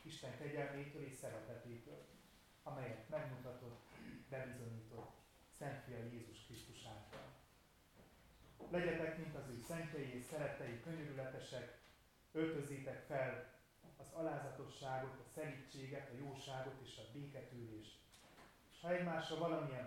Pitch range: 120-145 Hz